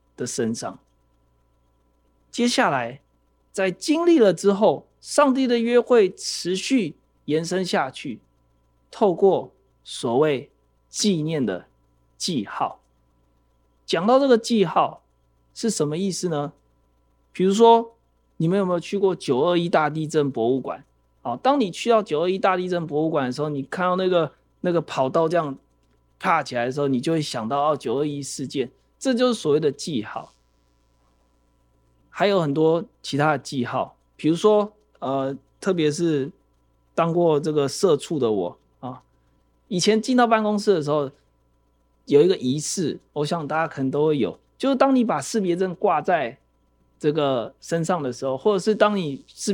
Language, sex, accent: Chinese, male, native